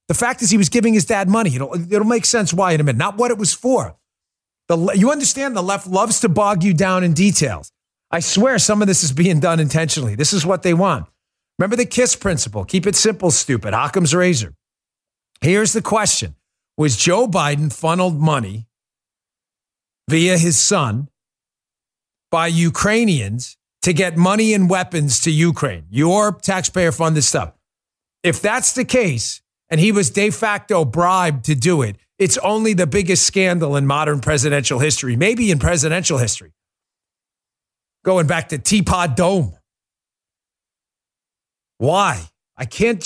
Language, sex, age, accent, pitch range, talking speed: English, male, 40-59, American, 150-200 Hz, 160 wpm